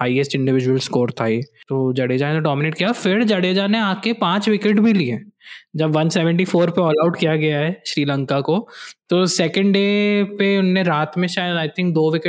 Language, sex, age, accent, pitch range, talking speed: Hindi, male, 20-39, native, 155-200 Hz, 75 wpm